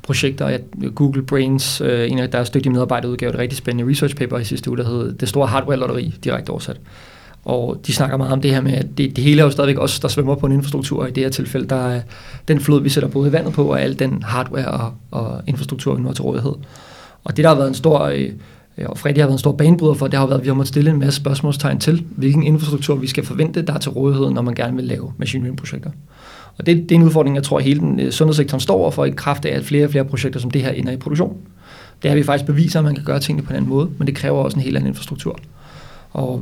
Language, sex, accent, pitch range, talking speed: Danish, male, native, 130-150 Hz, 265 wpm